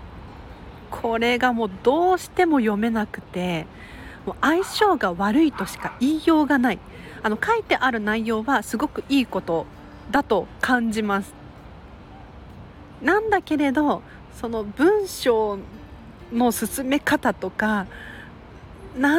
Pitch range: 195-300 Hz